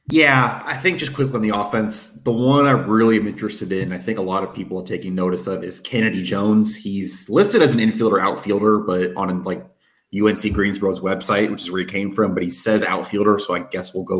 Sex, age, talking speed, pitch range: male, 30-49, 235 wpm, 95-110 Hz